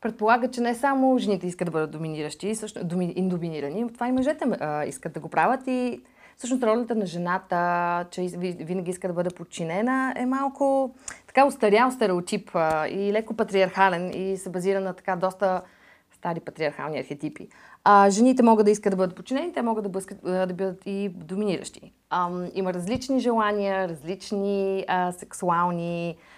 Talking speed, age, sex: 160 wpm, 30-49, female